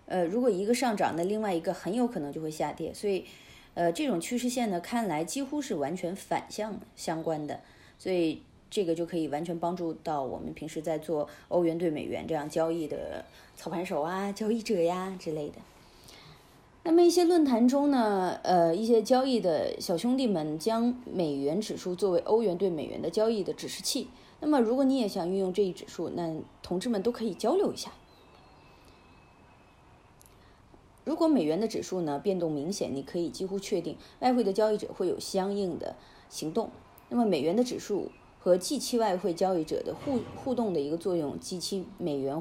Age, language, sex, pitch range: 20-39, Chinese, female, 165-220 Hz